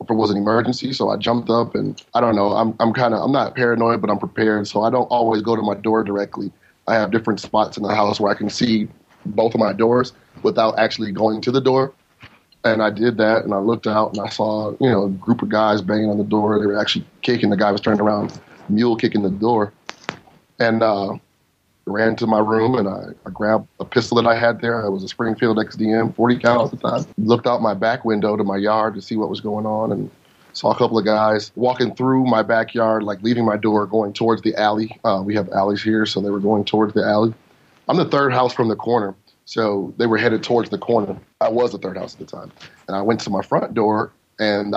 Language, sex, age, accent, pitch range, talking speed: English, male, 30-49, American, 105-115 Hz, 250 wpm